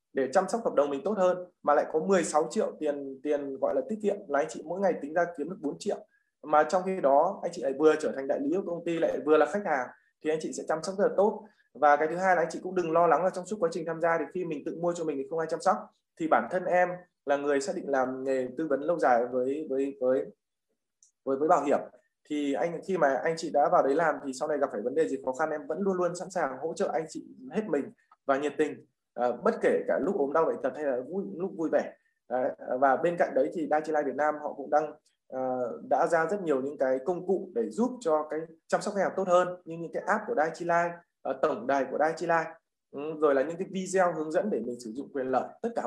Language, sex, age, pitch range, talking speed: Vietnamese, male, 20-39, 140-185 Hz, 290 wpm